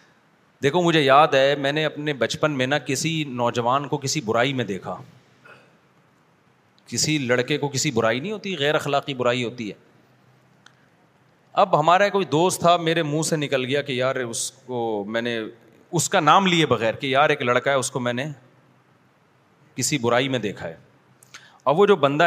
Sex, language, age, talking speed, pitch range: male, Urdu, 30-49, 175 wpm, 125-160 Hz